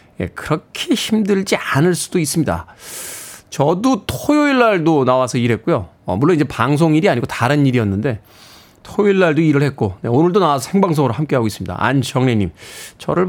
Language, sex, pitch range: Korean, male, 125-185 Hz